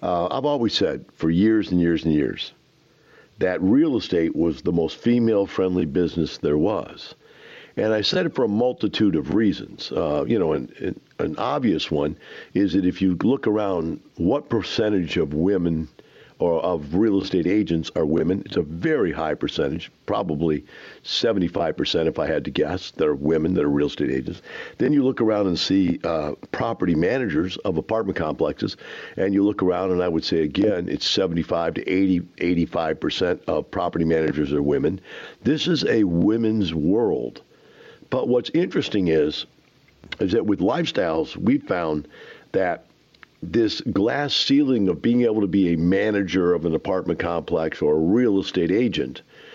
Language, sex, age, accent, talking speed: English, male, 50-69, American, 170 wpm